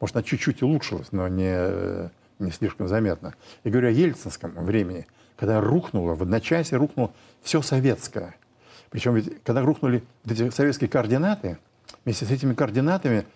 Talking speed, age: 150 wpm, 60-79